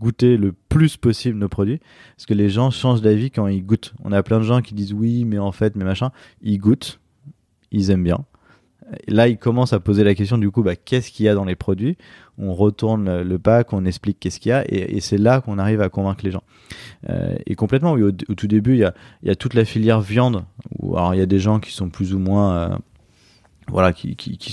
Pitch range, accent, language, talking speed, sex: 100-120 Hz, French, French, 265 wpm, male